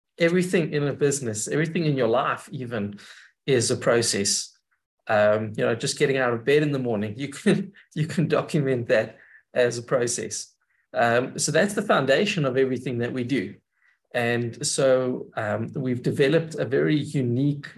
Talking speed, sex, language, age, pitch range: 170 wpm, male, English, 20-39, 115-140 Hz